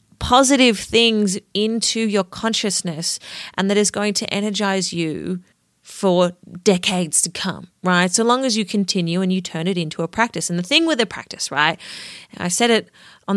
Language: English